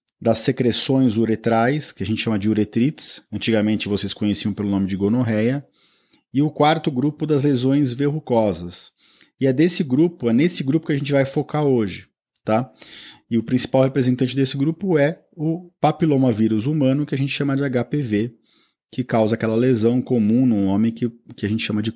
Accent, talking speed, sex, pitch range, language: Brazilian, 180 wpm, male, 110-140 Hz, Portuguese